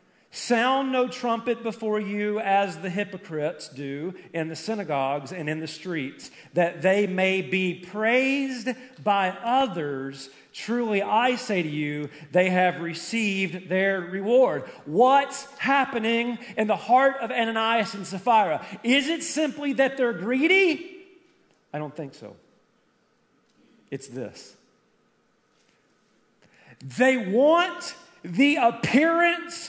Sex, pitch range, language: male, 205-310 Hz, English